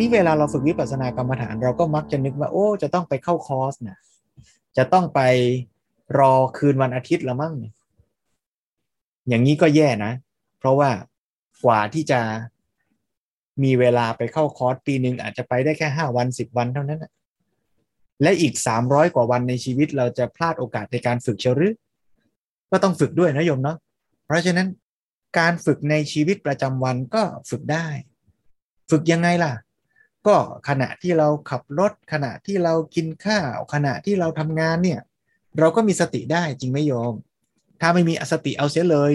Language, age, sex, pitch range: Thai, 20-39, male, 125-165 Hz